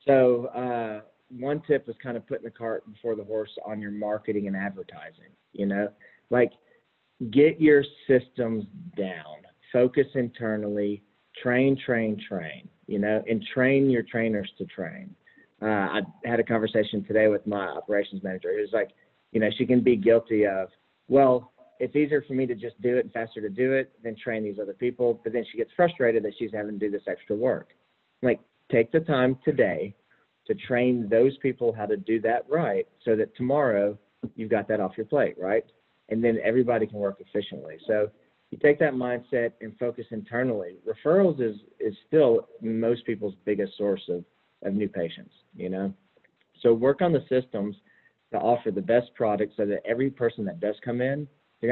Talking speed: 185 wpm